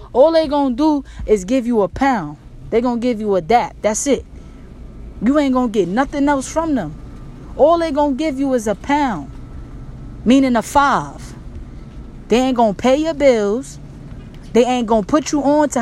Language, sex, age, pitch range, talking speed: English, female, 20-39, 185-270 Hz, 210 wpm